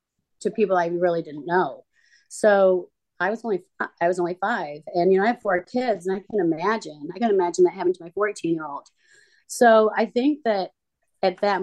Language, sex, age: English, female, 30-49